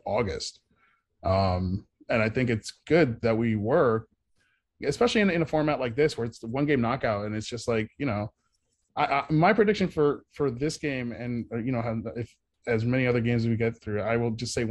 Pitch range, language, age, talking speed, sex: 105-135 Hz, English, 20-39, 225 wpm, male